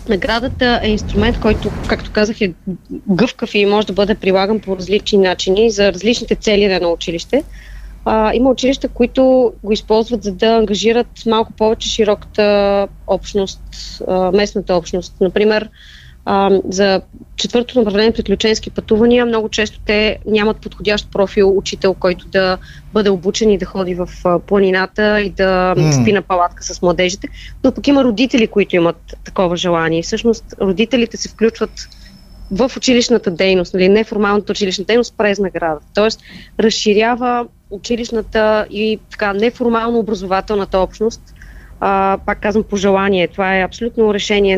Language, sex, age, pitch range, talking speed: Bulgarian, female, 20-39, 190-225 Hz, 135 wpm